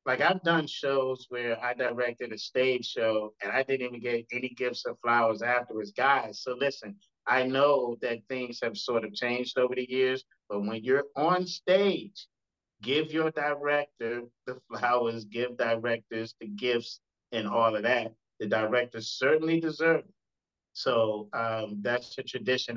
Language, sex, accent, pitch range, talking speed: English, male, American, 110-135 Hz, 160 wpm